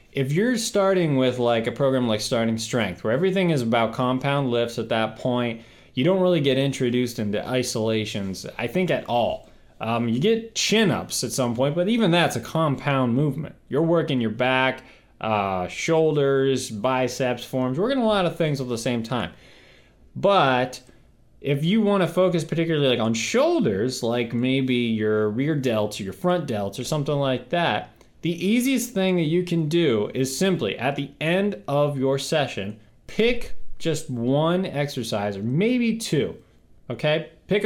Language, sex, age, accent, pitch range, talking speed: English, male, 20-39, American, 120-165 Hz, 170 wpm